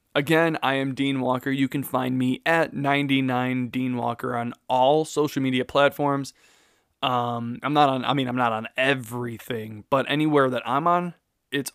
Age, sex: 20-39, male